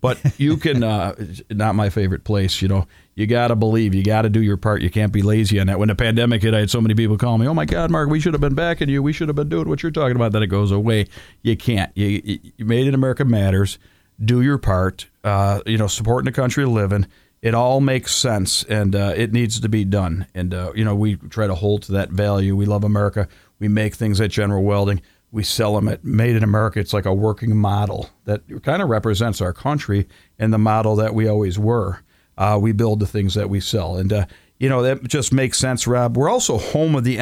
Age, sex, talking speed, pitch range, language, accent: 40-59, male, 255 wpm, 100-120 Hz, English, American